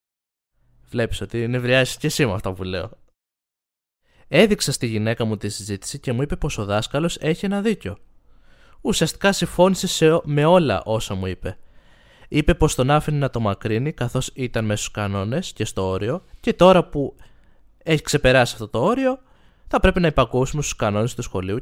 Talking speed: 175 wpm